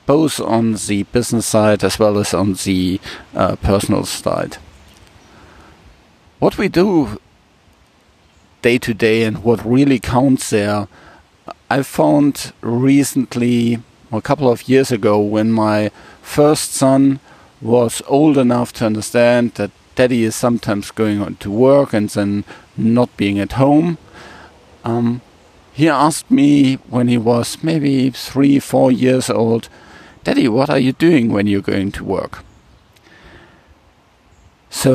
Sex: male